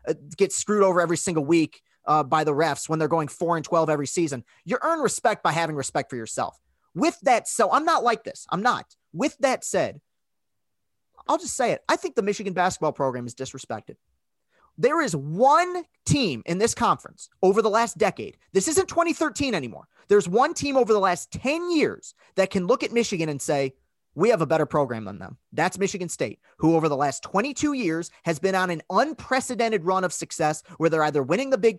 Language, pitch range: English, 160-235 Hz